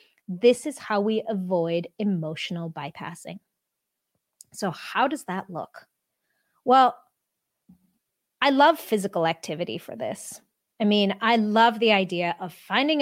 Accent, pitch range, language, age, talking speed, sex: American, 175-240 Hz, English, 30-49, 125 wpm, female